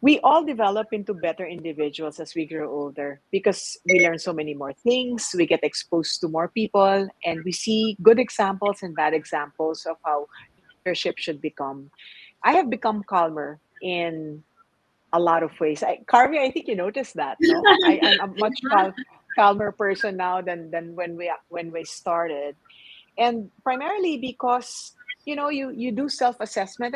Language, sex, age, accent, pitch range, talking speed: English, female, 40-59, Filipino, 160-225 Hz, 170 wpm